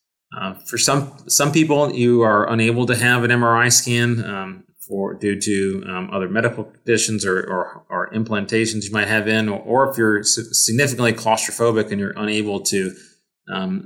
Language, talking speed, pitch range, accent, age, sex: English, 175 wpm, 100-120 Hz, American, 30-49, male